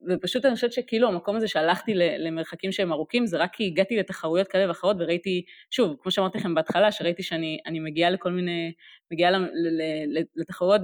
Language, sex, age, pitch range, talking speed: Hebrew, female, 20-39, 165-200 Hz, 170 wpm